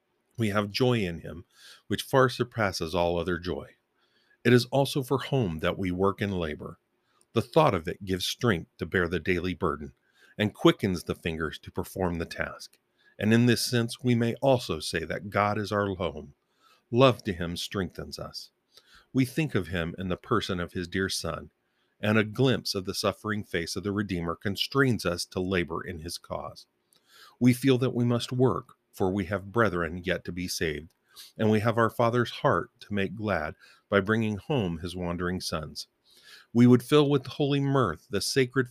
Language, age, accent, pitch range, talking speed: English, 50-69, American, 90-115 Hz, 190 wpm